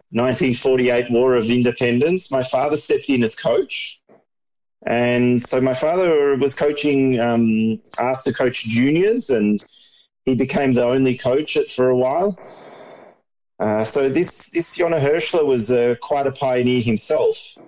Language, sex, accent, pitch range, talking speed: Hebrew, male, Australian, 115-145 Hz, 145 wpm